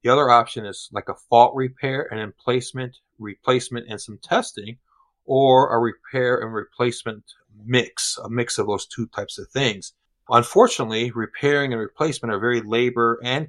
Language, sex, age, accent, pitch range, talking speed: English, male, 40-59, American, 110-130 Hz, 160 wpm